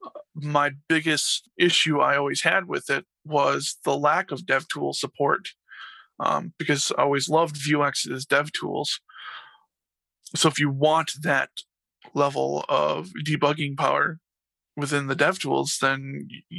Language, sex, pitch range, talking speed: English, male, 140-165 Hz, 135 wpm